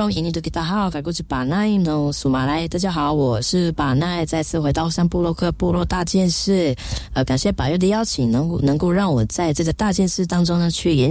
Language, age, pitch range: Chinese, 20-39, 125-175 Hz